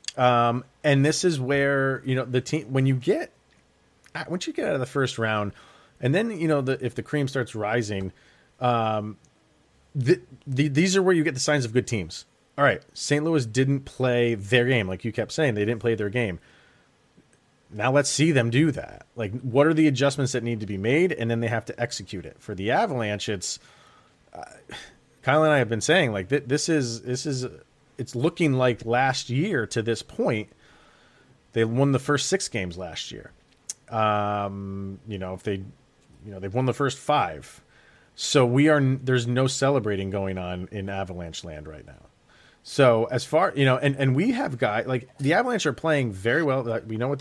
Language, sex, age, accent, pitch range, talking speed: English, male, 30-49, American, 115-145 Hz, 210 wpm